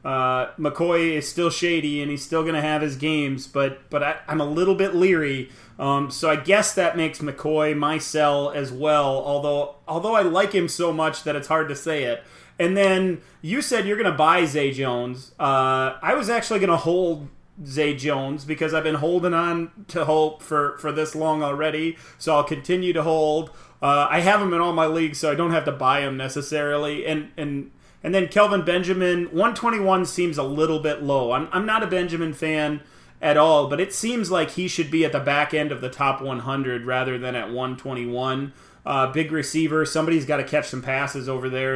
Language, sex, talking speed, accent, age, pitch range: English, male, 210 wpm, American, 30-49, 140-165 Hz